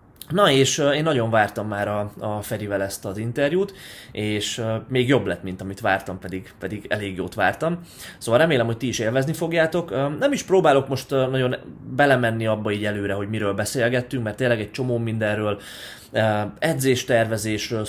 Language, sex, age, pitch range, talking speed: Hungarian, male, 20-39, 105-130 Hz, 165 wpm